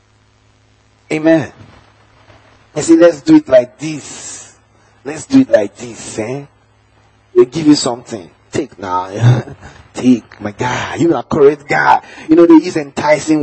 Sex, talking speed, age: male, 145 wpm, 30-49